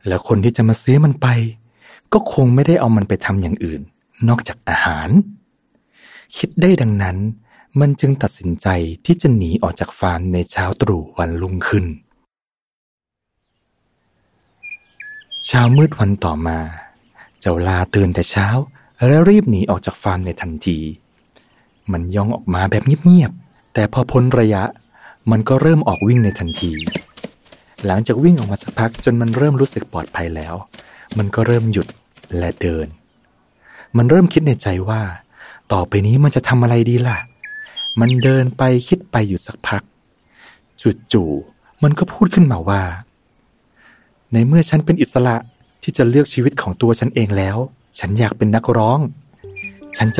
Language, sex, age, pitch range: Thai, male, 20-39, 100-130 Hz